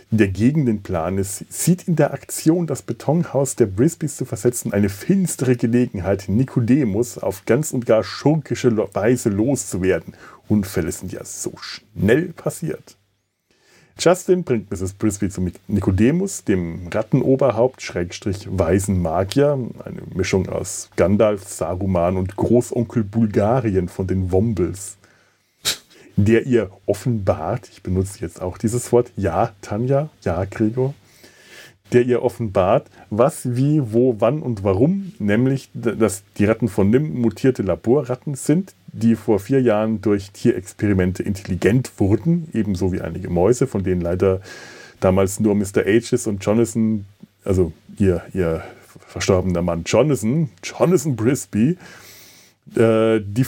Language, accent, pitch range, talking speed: German, German, 95-125 Hz, 125 wpm